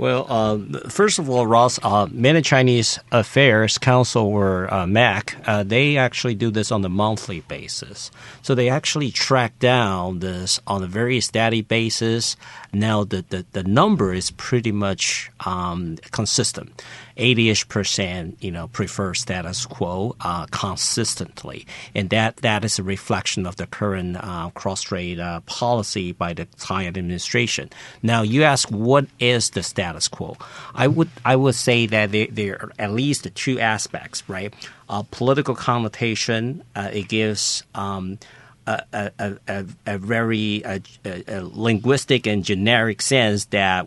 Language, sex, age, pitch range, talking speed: English, male, 50-69, 95-120 Hz, 155 wpm